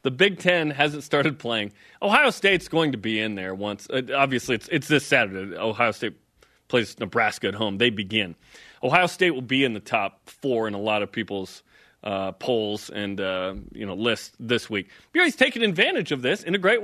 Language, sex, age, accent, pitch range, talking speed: English, male, 30-49, American, 120-185 Hz, 205 wpm